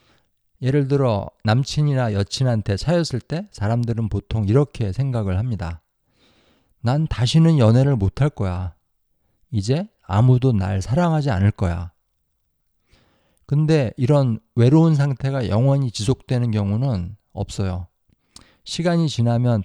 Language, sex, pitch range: Korean, male, 100-135 Hz